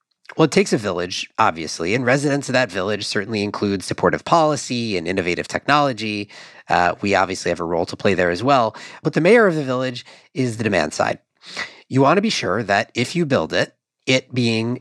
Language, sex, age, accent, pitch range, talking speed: English, male, 40-59, American, 100-150 Hz, 205 wpm